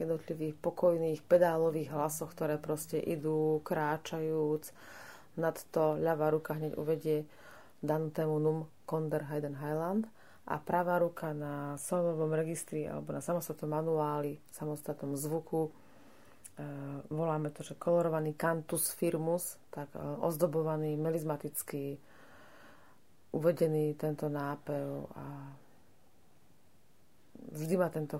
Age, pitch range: 30-49, 150-165 Hz